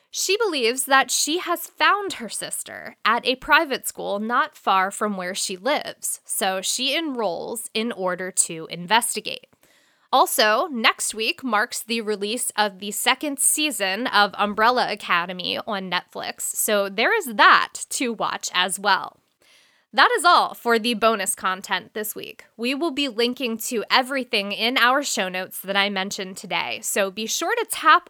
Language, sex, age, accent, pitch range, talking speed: English, female, 20-39, American, 205-275 Hz, 160 wpm